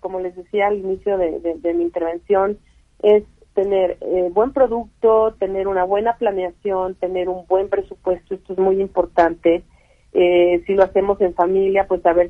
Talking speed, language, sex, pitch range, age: 175 wpm, Spanish, female, 175-200 Hz, 40-59